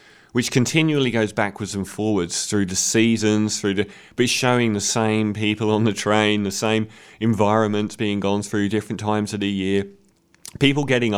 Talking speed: 175 wpm